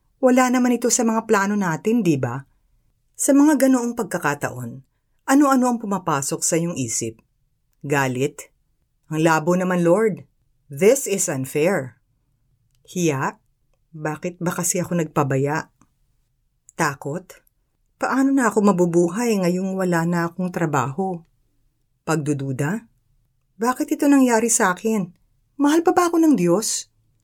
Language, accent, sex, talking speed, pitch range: Filipino, native, female, 120 wpm, 135-200 Hz